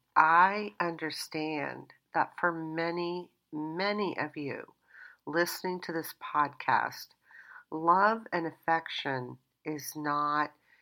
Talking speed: 95 wpm